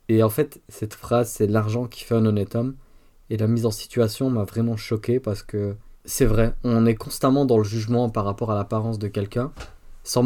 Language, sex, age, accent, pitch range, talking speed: French, male, 20-39, French, 105-120 Hz, 215 wpm